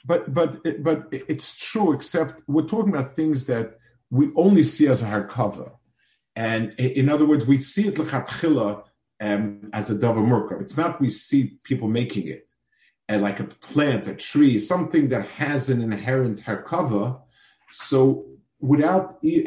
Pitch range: 110-150 Hz